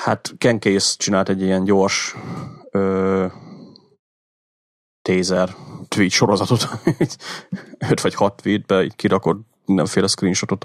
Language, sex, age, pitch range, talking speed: Hungarian, male, 30-49, 95-110 Hz, 95 wpm